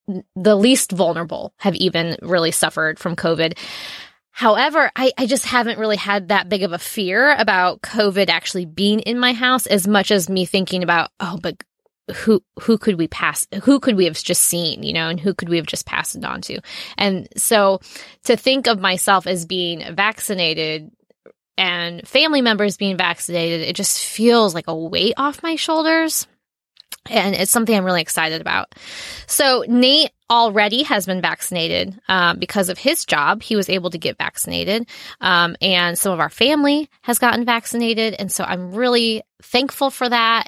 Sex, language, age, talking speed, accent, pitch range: female, English, 10-29, 180 wpm, American, 185-245 Hz